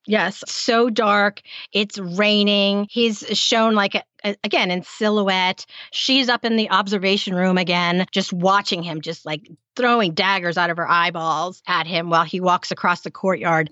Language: English